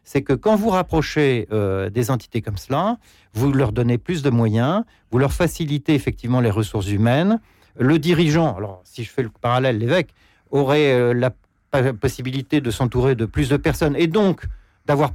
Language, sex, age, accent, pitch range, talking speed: French, male, 50-69, French, 120-160 Hz, 180 wpm